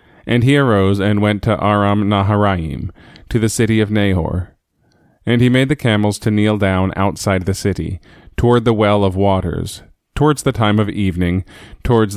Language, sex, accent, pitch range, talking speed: English, male, American, 95-115 Hz, 175 wpm